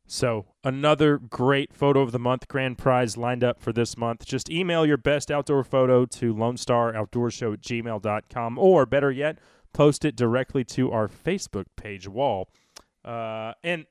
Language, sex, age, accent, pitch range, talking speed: English, male, 30-49, American, 115-145 Hz, 160 wpm